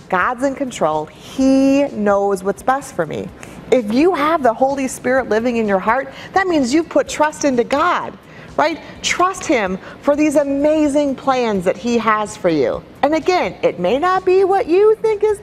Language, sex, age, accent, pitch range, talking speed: English, female, 30-49, American, 195-290 Hz, 185 wpm